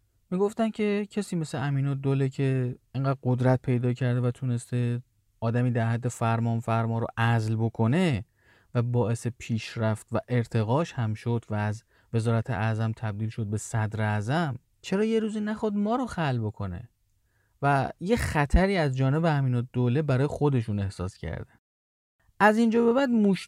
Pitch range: 115-170 Hz